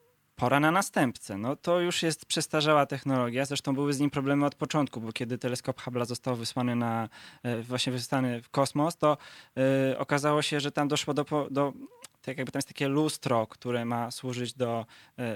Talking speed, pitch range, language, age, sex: 185 wpm, 120-140 Hz, Polish, 20-39, male